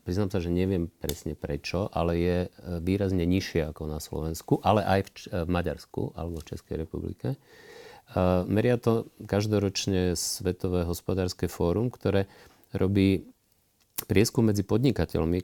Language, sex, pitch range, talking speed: Slovak, male, 85-105 Hz, 125 wpm